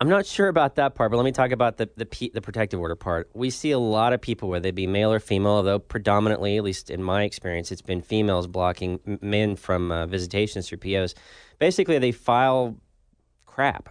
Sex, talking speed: male, 220 wpm